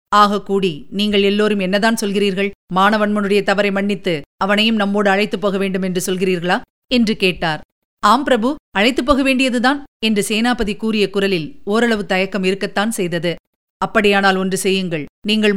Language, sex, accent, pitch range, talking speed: Tamil, female, native, 185-215 Hz, 135 wpm